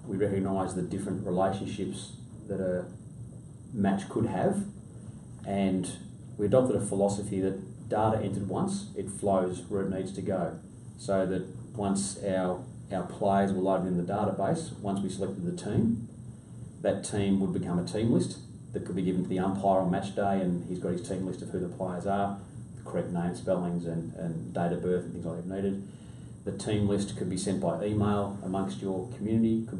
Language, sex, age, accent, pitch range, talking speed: English, male, 30-49, Australian, 95-105 Hz, 195 wpm